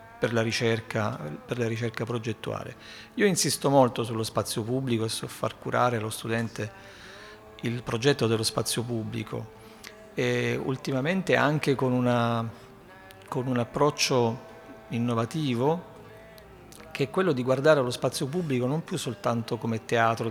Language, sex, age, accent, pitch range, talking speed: Italian, male, 50-69, native, 115-145 Hz, 125 wpm